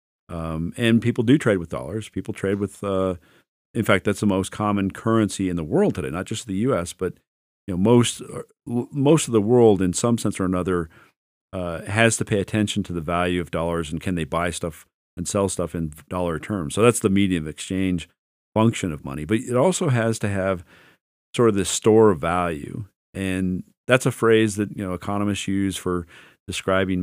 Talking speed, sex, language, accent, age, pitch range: 205 wpm, male, English, American, 40-59, 85-110 Hz